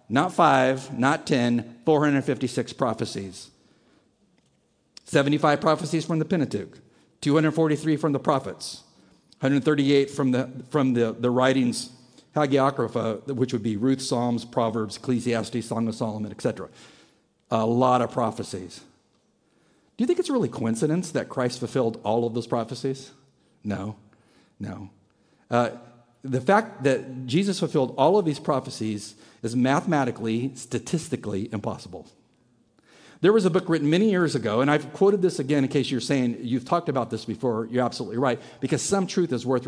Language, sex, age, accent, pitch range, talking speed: English, male, 50-69, American, 115-150 Hz, 150 wpm